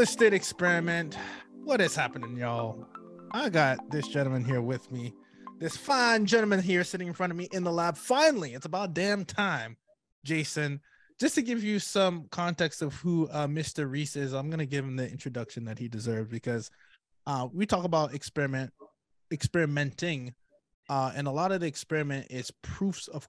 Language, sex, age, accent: English, male, 20-39, American